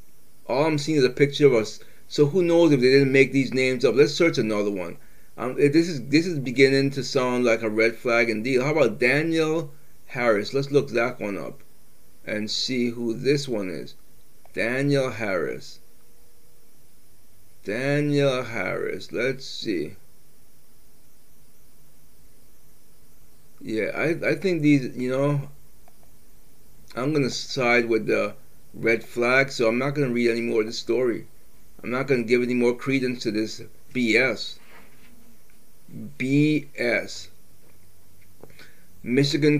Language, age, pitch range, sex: English, 30-49, 120-155 Hz, male